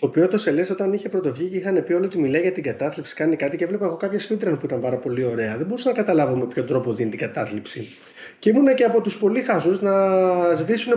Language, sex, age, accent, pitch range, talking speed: Greek, male, 30-49, native, 140-205 Hz, 255 wpm